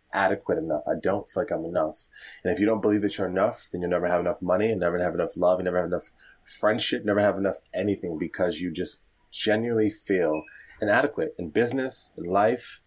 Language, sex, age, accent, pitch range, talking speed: English, male, 20-39, American, 90-110 Hz, 215 wpm